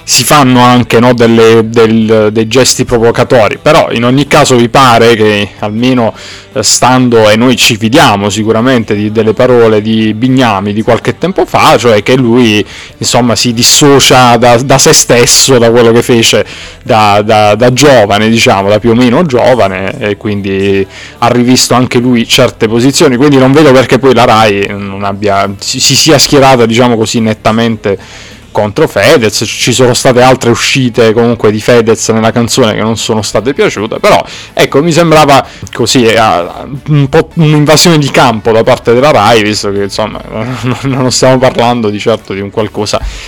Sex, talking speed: male, 170 wpm